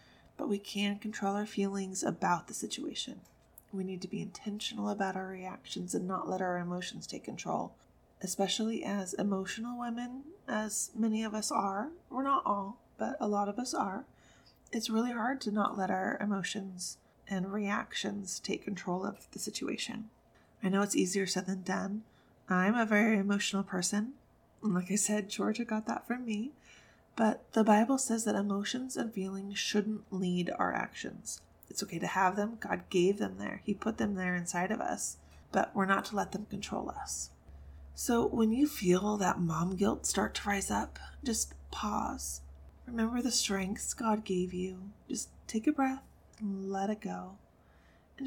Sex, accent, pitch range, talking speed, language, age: female, American, 185-225 Hz, 175 wpm, English, 20-39